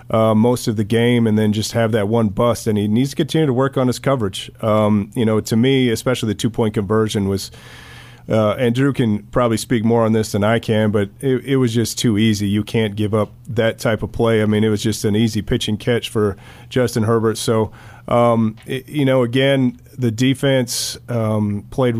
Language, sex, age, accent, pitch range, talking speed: English, male, 30-49, American, 110-125 Hz, 220 wpm